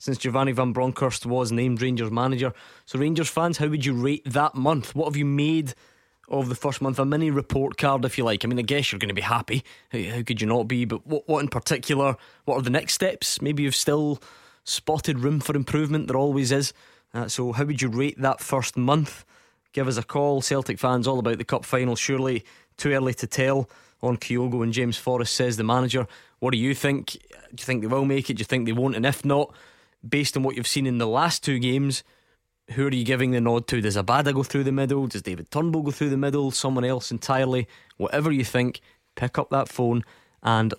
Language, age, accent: English, 20-39, British